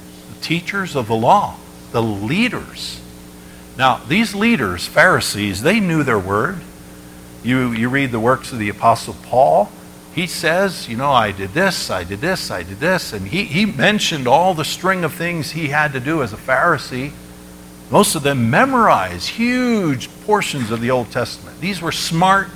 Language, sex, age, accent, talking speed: English, male, 60-79, American, 175 wpm